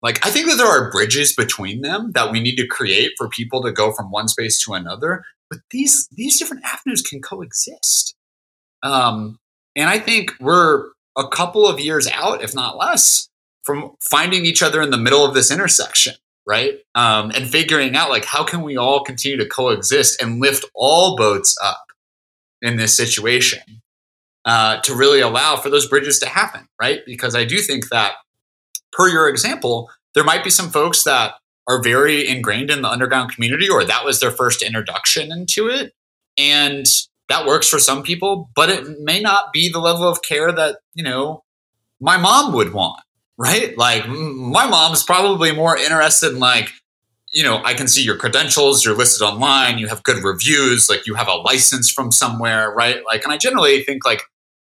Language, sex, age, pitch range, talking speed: English, male, 30-49, 115-160 Hz, 190 wpm